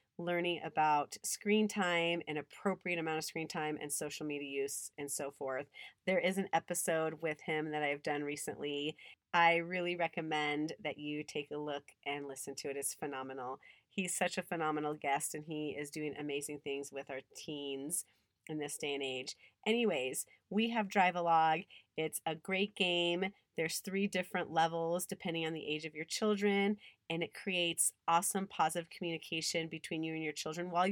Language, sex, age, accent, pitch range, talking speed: English, female, 30-49, American, 145-180 Hz, 175 wpm